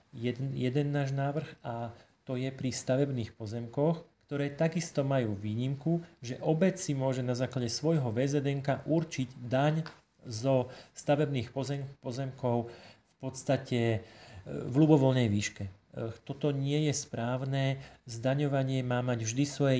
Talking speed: 125 wpm